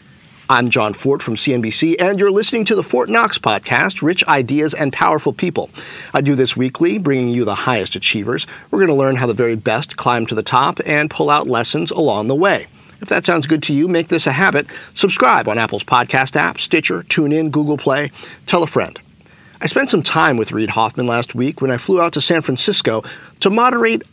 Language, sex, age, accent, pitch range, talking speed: English, male, 40-59, American, 130-170 Hz, 215 wpm